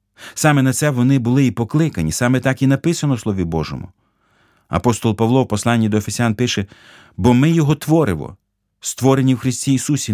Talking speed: 170 wpm